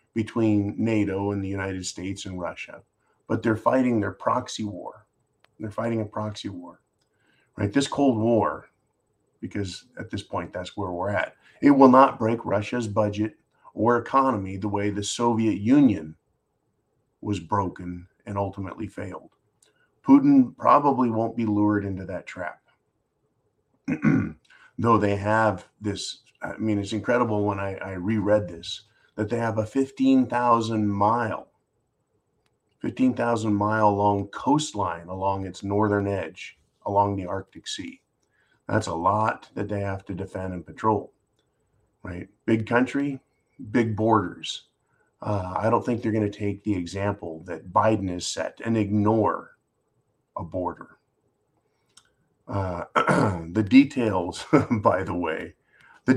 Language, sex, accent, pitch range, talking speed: English, male, American, 100-115 Hz, 140 wpm